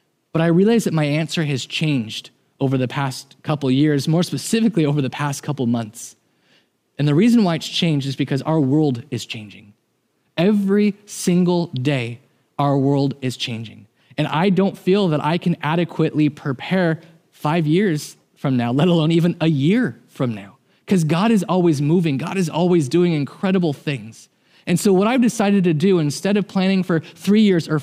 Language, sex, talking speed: English, male, 185 wpm